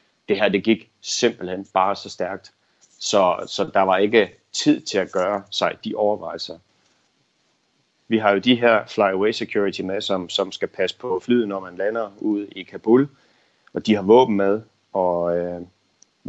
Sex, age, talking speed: male, 30-49, 170 wpm